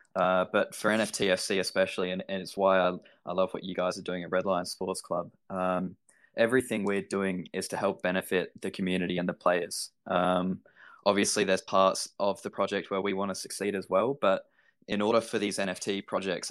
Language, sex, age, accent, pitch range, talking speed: English, male, 20-39, Australian, 90-95 Hz, 205 wpm